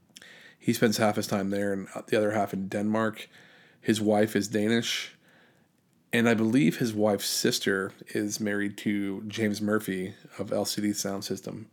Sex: male